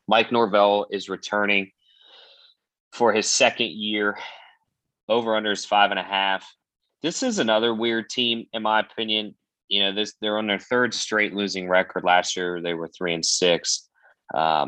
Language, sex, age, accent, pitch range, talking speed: English, male, 30-49, American, 85-105 Hz, 170 wpm